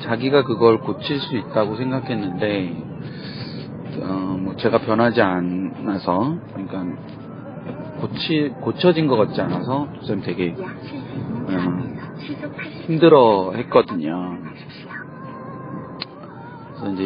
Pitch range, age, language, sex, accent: 105-150 Hz, 40-59, Korean, male, native